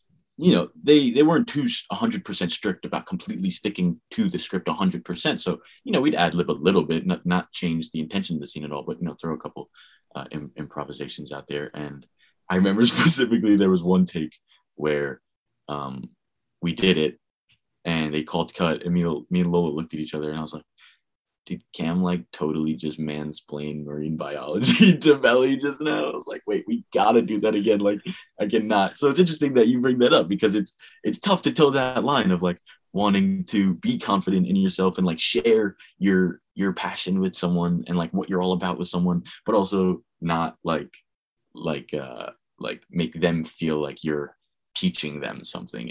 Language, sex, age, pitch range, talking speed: English, male, 20-39, 80-115 Hz, 200 wpm